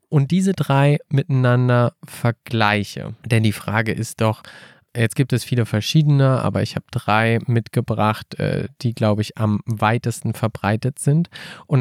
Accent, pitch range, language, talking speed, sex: German, 115-145 Hz, German, 140 wpm, male